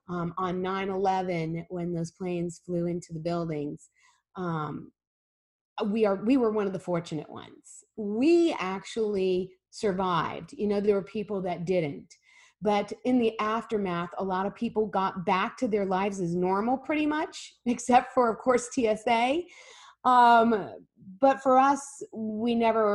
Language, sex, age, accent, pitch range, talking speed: English, female, 30-49, American, 190-250 Hz, 150 wpm